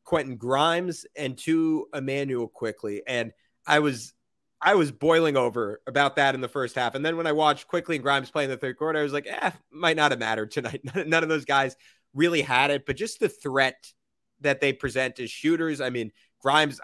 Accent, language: American, English